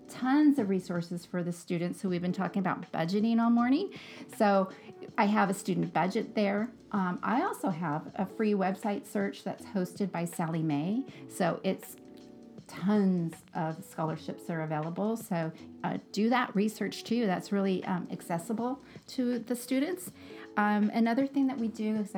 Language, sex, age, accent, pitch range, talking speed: English, female, 40-59, American, 175-220 Hz, 170 wpm